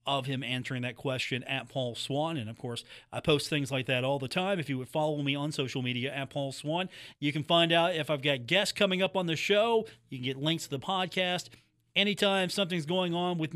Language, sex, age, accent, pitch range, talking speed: English, male, 40-59, American, 125-180 Hz, 245 wpm